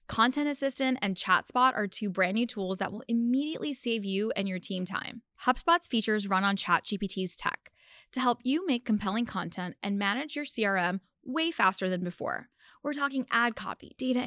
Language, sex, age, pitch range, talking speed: English, female, 10-29, 190-245 Hz, 180 wpm